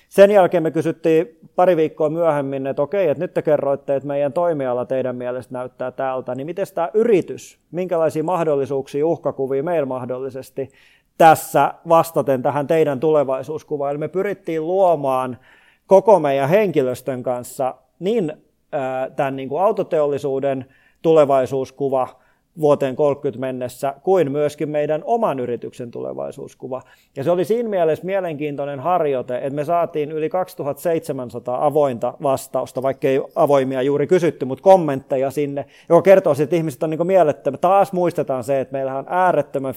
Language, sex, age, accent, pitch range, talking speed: Finnish, male, 30-49, native, 130-165 Hz, 140 wpm